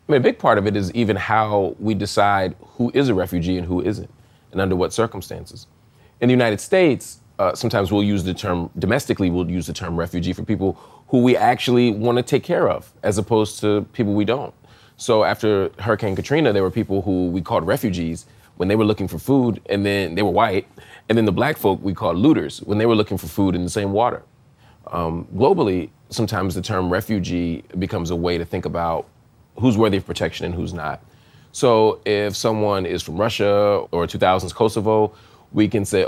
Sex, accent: male, American